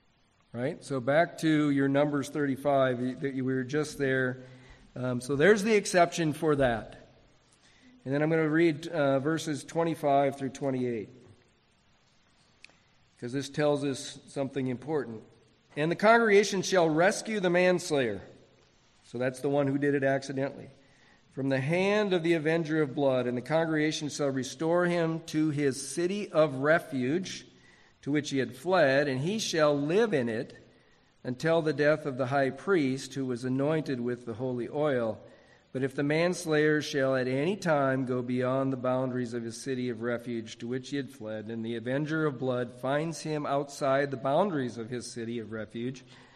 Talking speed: 170 wpm